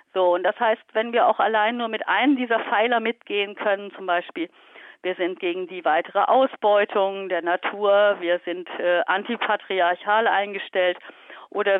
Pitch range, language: 195-235 Hz, German